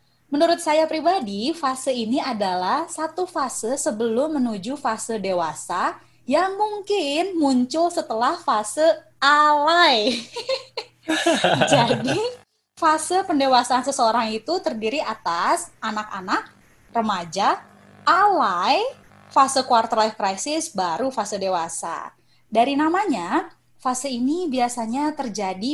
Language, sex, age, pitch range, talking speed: Indonesian, female, 20-39, 215-310 Hz, 95 wpm